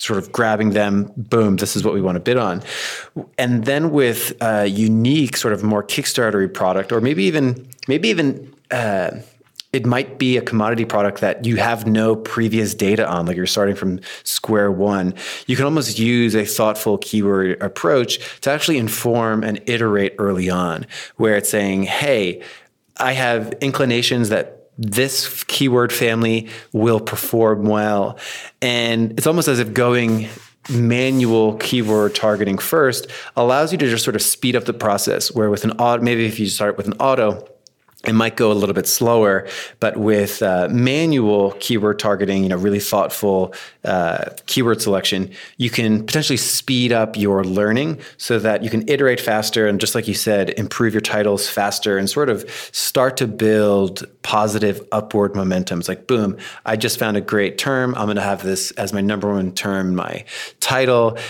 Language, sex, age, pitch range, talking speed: English, male, 30-49, 100-120 Hz, 175 wpm